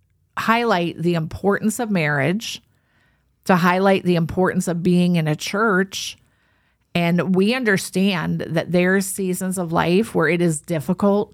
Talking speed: 145 wpm